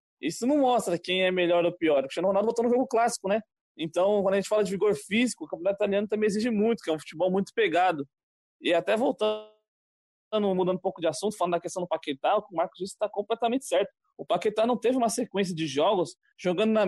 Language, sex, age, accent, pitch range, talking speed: Portuguese, male, 20-39, Brazilian, 165-215 Hz, 230 wpm